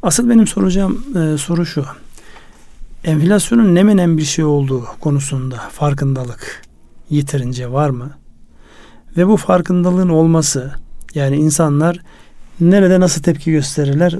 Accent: native